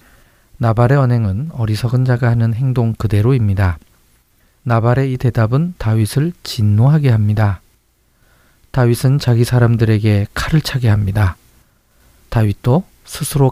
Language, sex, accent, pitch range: Korean, male, native, 105-125 Hz